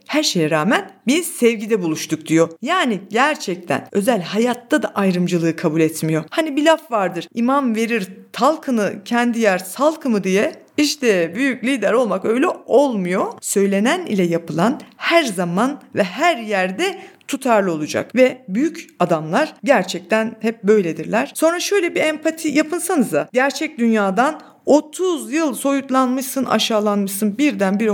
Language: Turkish